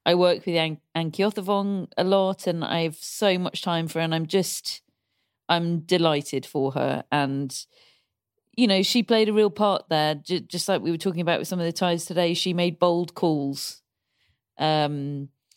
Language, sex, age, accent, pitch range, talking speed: English, female, 40-59, British, 155-185 Hz, 195 wpm